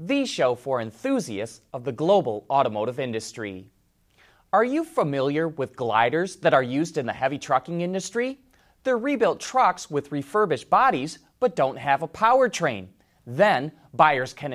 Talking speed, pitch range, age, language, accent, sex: 150 wpm, 135-210 Hz, 30-49, English, American, male